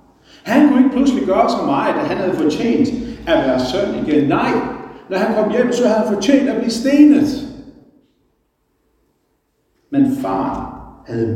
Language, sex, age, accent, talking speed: Danish, male, 60-79, native, 160 wpm